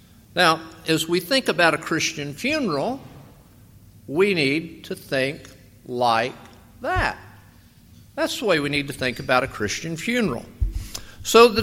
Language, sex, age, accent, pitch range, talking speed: English, male, 50-69, American, 145-215 Hz, 140 wpm